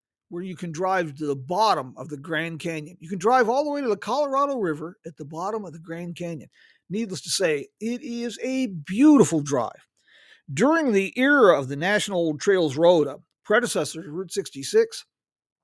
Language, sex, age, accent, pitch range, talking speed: English, male, 50-69, American, 155-225 Hz, 190 wpm